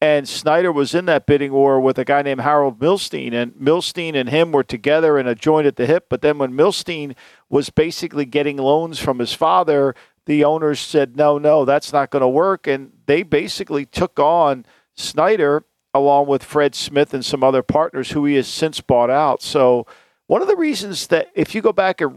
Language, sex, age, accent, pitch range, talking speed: English, male, 50-69, American, 135-160 Hz, 210 wpm